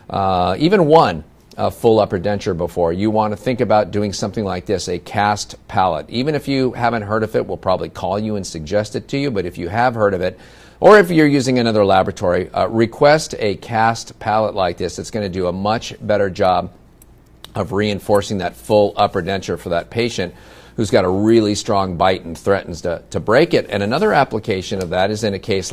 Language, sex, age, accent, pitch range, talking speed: English, male, 50-69, American, 95-110 Hz, 225 wpm